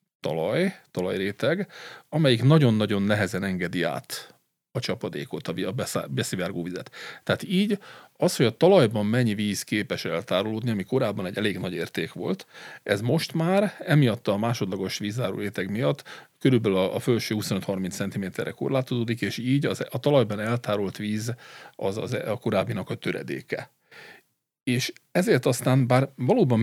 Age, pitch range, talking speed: 40-59, 105-135 Hz, 140 wpm